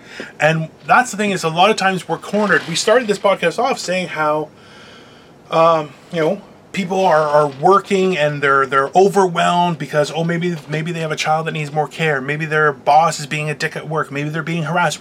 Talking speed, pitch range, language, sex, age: 215 wpm, 145-180 Hz, English, male, 30-49